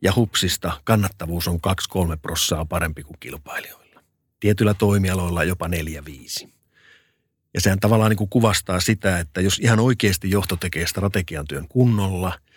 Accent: native